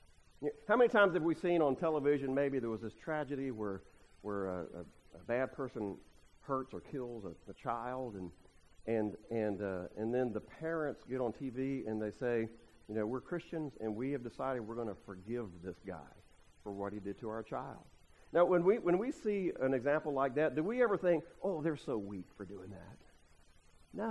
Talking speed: 205 wpm